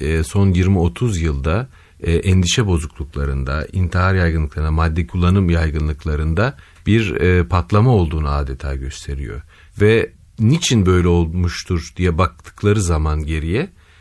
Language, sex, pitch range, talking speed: Turkish, male, 85-110 Hz, 100 wpm